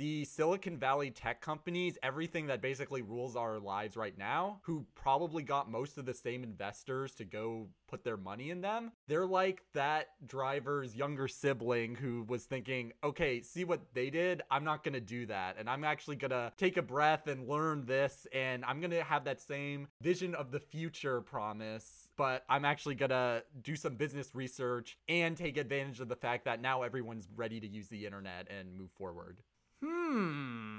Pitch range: 120-155 Hz